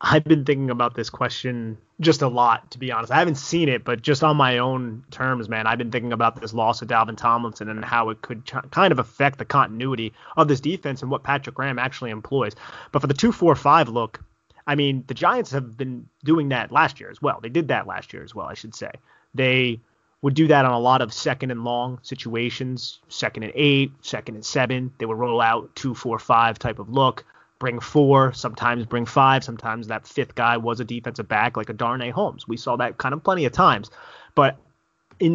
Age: 30-49